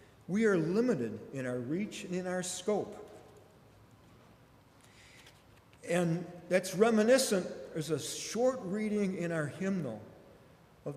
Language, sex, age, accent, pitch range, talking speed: English, male, 50-69, American, 135-195 Hz, 115 wpm